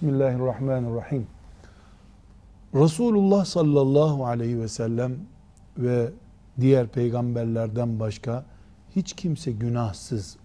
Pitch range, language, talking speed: 95-150 Hz, Turkish, 75 wpm